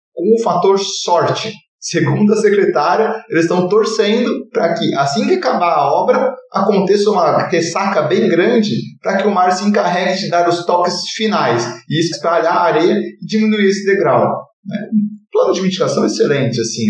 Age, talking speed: 20-39, 165 wpm